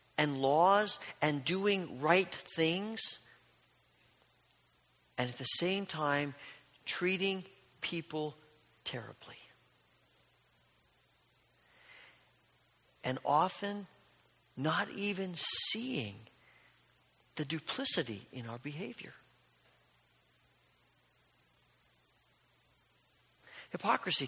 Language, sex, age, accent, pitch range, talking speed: English, male, 40-59, American, 120-170 Hz, 60 wpm